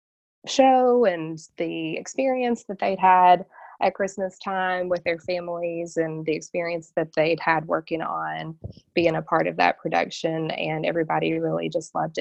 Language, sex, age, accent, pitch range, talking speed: English, female, 20-39, American, 155-175 Hz, 155 wpm